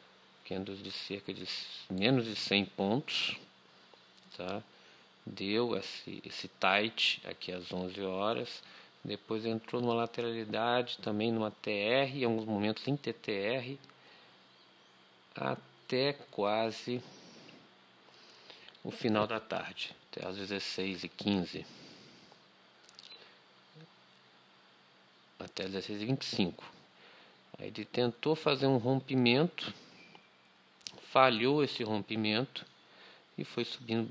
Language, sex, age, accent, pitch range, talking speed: Portuguese, male, 50-69, Brazilian, 100-120 Hz, 95 wpm